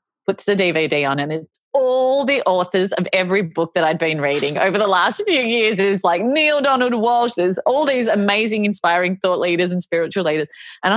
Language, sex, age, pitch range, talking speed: English, female, 30-49, 160-215 Hz, 200 wpm